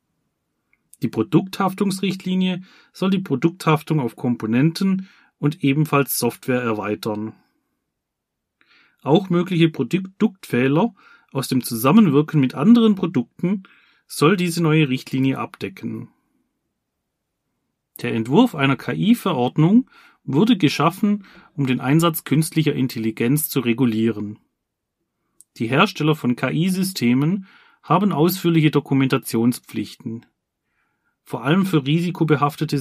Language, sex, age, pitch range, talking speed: German, male, 30-49, 130-175 Hz, 90 wpm